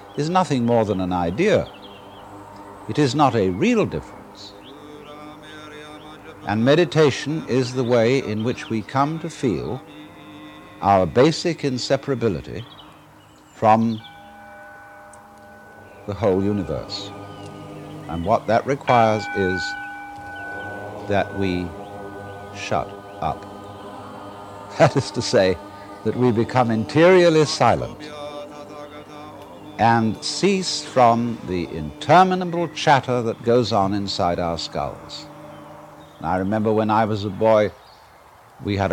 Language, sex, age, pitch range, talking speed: English, male, 60-79, 100-135 Hz, 105 wpm